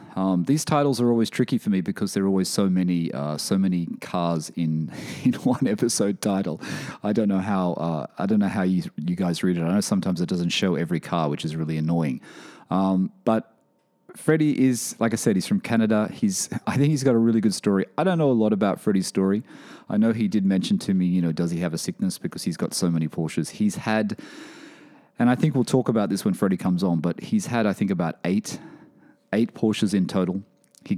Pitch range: 90-130 Hz